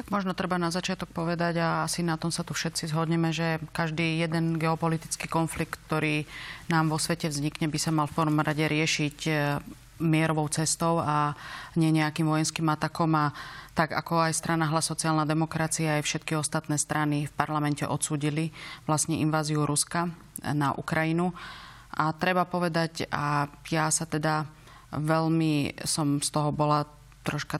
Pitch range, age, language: 150-165 Hz, 30-49, Slovak